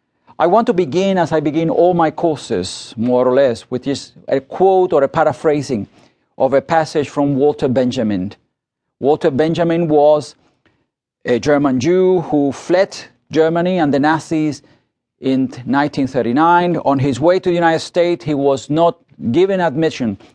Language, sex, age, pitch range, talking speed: English, male, 40-59, 135-175 Hz, 155 wpm